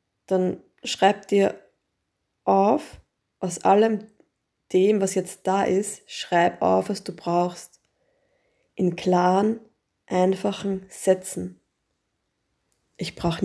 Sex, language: female, German